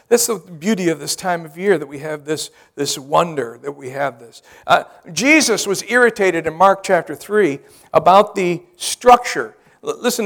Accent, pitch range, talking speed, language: American, 170-235 Hz, 175 wpm, English